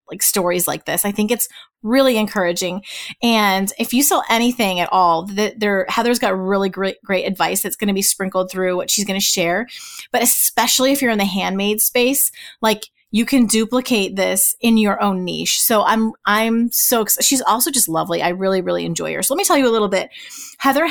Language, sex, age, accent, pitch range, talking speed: English, female, 30-49, American, 200-255 Hz, 210 wpm